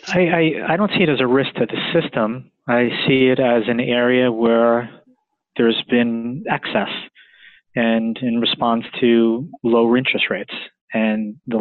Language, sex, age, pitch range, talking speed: English, male, 20-39, 115-130 Hz, 155 wpm